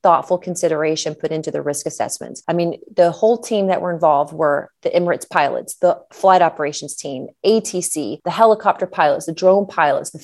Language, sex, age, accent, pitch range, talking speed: English, female, 30-49, American, 155-180 Hz, 180 wpm